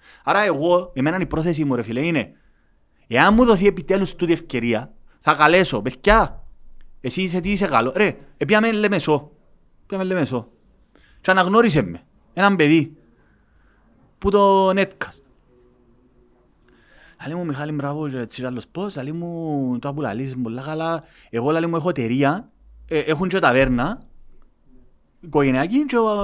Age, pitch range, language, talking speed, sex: 30-49, 135-195 Hz, Greek, 125 wpm, male